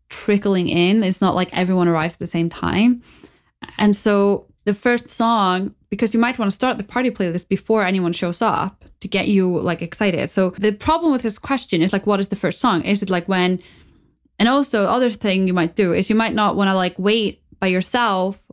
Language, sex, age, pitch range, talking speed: English, female, 20-39, 180-210 Hz, 220 wpm